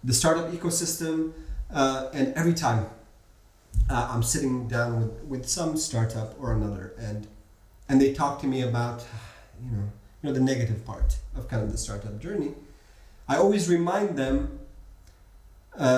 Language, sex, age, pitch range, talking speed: English, male, 30-49, 115-150 Hz, 155 wpm